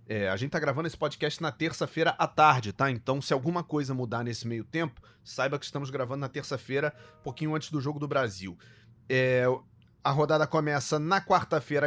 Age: 30-49